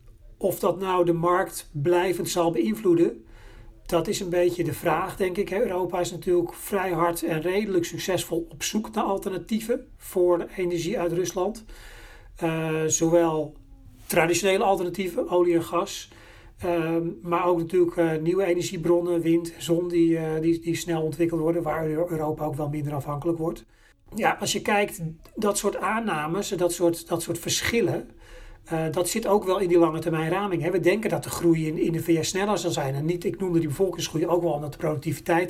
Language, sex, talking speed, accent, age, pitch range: English, male, 185 wpm, Dutch, 40-59, 160-180 Hz